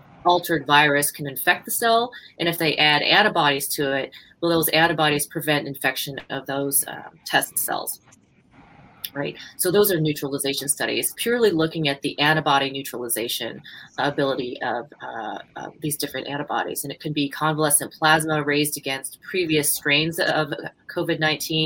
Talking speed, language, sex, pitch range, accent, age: 150 wpm, English, female, 145-165 Hz, American, 30-49